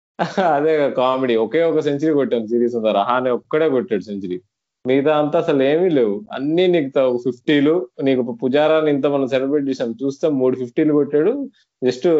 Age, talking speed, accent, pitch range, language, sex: 20-39, 150 wpm, native, 120-165 Hz, Telugu, male